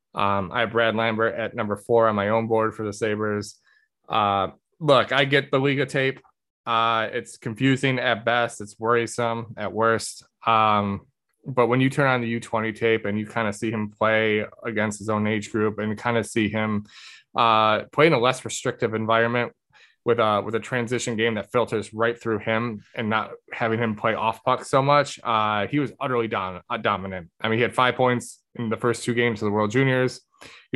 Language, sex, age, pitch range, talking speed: English, male, 20-39, 110-125 Hz, 205 wpm